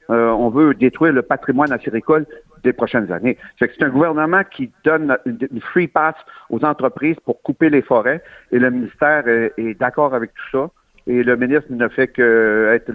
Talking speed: 185 wpm